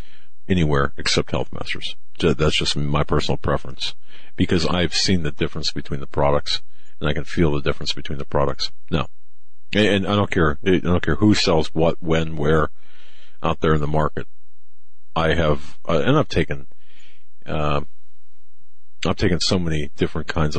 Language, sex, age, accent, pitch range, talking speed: English, male, 50-69, American, 75-85 Hz, 165 wpm